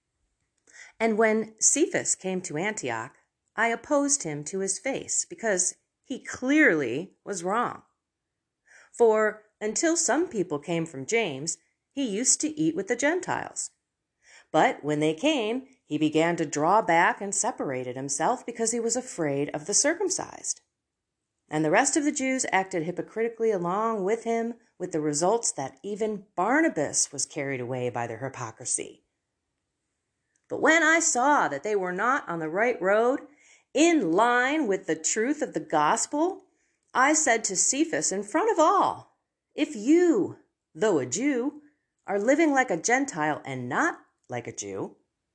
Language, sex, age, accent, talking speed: English, female, 40-59, American, 155 wpm